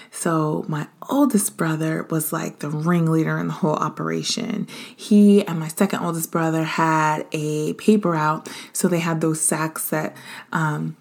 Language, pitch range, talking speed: English, 155-195 Hz, 160 wpm